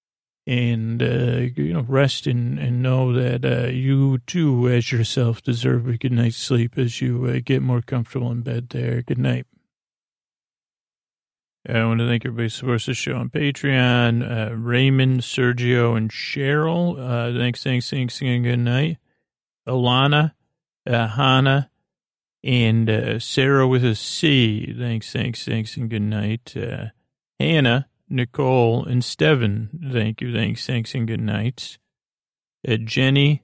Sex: male